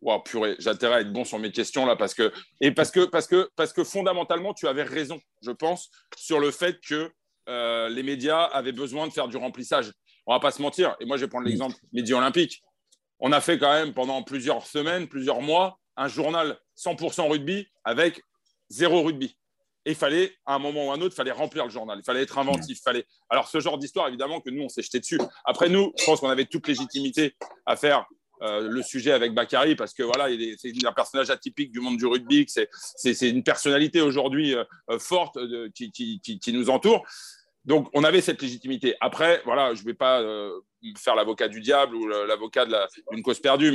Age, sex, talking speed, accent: 40-59, male, 230 wpm, French